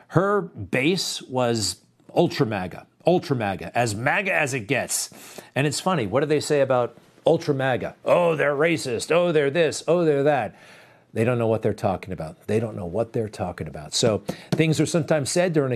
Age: 50-69